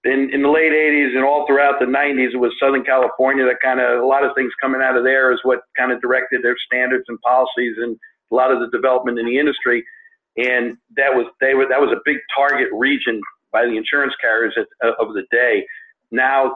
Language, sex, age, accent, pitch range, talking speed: English, male, 50-69, American, 125-150 Hz, 230 wpm